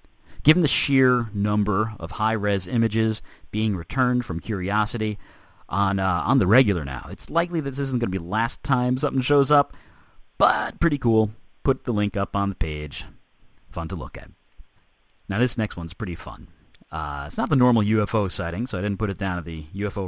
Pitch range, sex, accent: 95-135 Hz, male, American